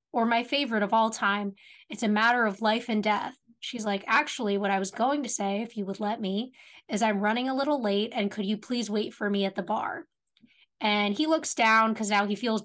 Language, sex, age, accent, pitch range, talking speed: English, female, 20-39, American, 210-255 Hz, 240 wpm